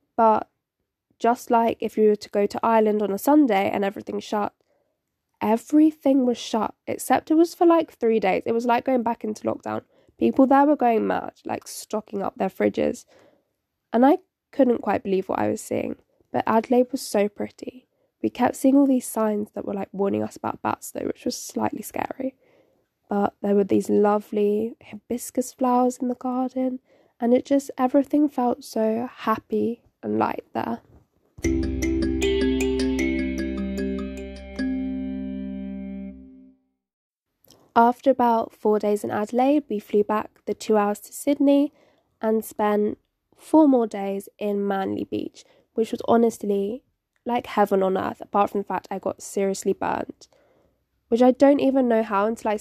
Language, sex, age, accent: English, female, 10-29, British